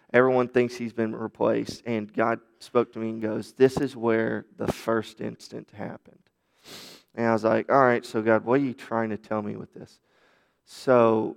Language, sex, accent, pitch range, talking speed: English, male, American, 110-120 Hz, 195 wpm